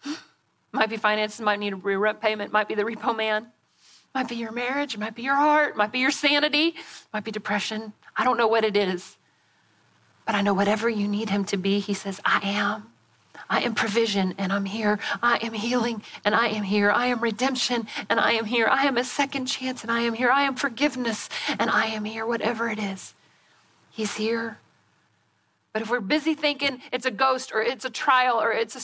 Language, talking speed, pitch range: English, 215 wpm, 215-295 Hz